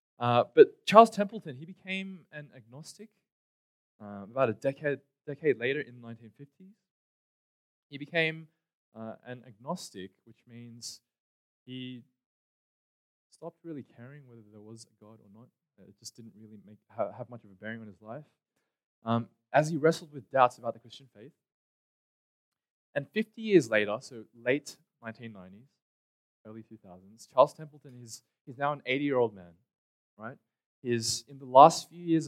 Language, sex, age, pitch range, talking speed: English, male, 20-39, 115-150 Hz, 155 wpm